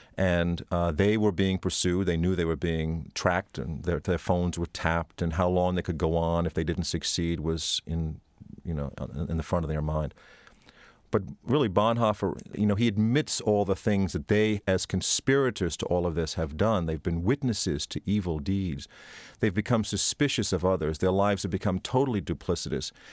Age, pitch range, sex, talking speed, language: 40-59, 85-110 Hz, male, 195 wpm, English